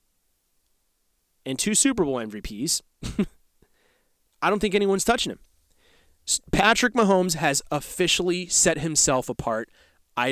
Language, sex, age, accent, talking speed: English, male, 30-49, American, 110 wpm